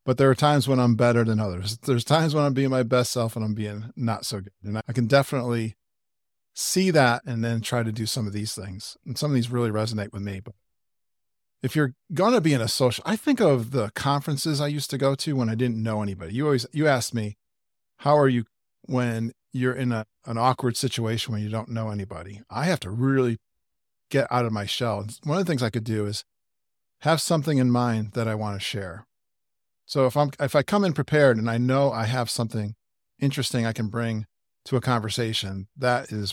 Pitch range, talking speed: 105-135 Hz, 230 wpm